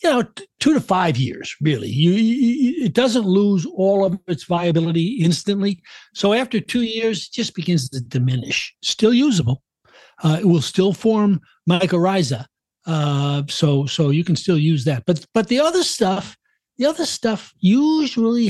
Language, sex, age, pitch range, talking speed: English, male, 60-79, 145-195 Hz, 170 wpm